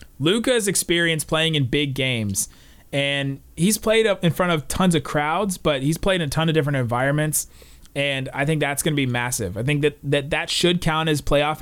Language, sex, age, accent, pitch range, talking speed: English, male, 30-49, American, 120-165 Hz, 215 wpm